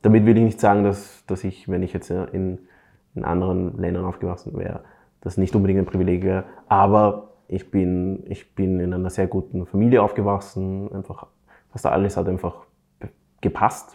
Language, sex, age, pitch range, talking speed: German, male, 20-39, 90-105 Hz, 170 wpm